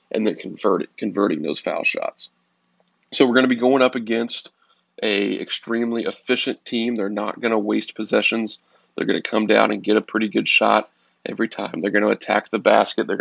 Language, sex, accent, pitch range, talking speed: English, male, American, 105-120 Hz, 205 wpm